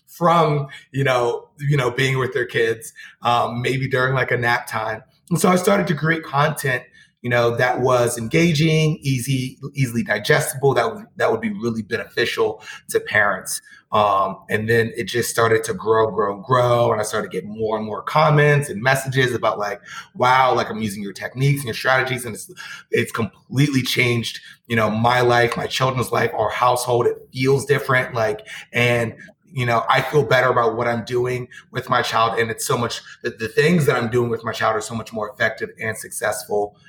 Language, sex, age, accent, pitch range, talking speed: English, male, 30-49, American, 115-140 Hz, 200 wpm